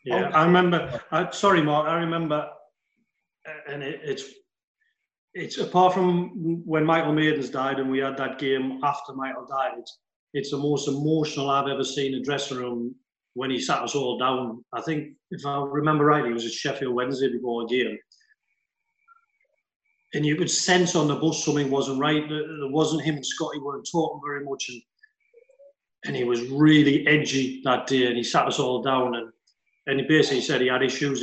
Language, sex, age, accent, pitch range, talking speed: English, male, 40-59, British, 130-165 Hz, 185 wpm